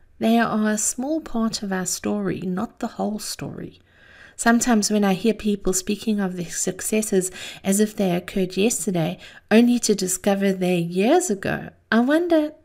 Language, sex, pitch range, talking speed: English, female, 190-235 Hz, 160 wpm